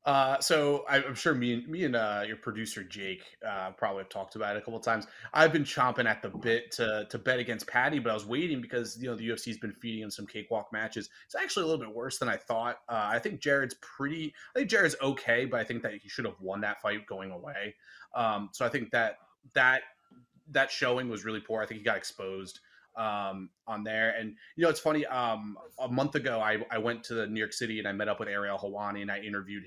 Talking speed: 250 wpm